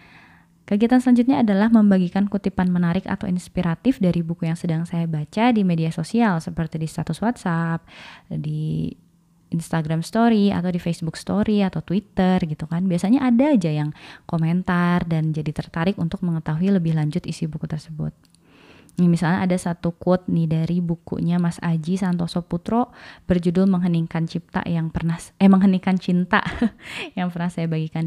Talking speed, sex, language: 150 wpm, female, Indonesian